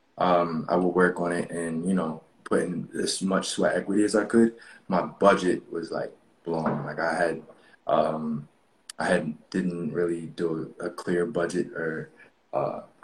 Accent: American